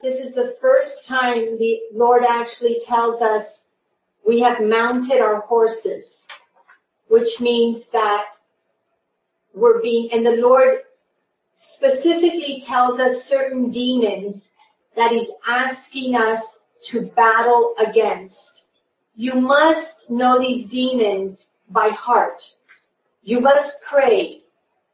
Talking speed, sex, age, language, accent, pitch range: 110 wpm, female, 40-59, English, American, 230-280 Hz